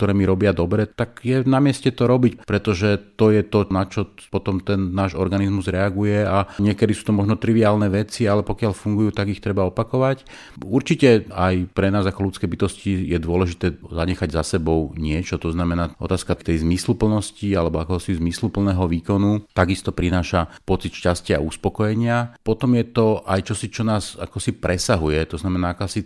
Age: 40-59